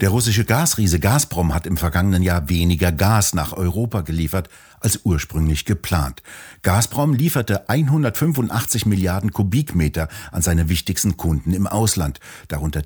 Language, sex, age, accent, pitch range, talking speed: German, male, 60-79, German, 85-105 Hz, 130 wpm